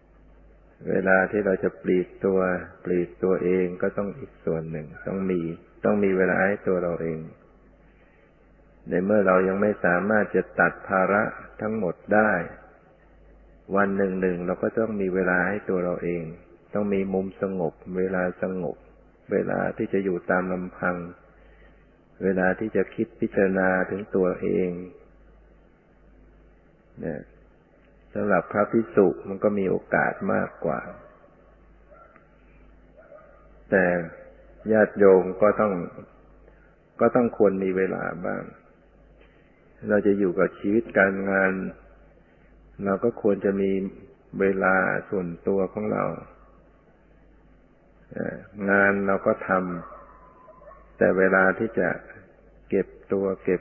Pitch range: 90-100 Hz